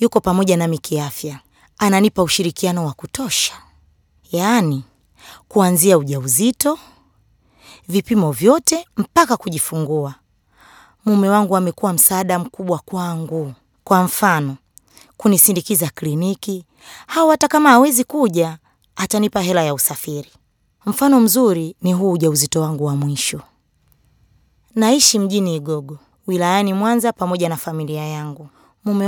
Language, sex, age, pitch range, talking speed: Swahili, female, 20-39, 160-220 Hz, 105 wpm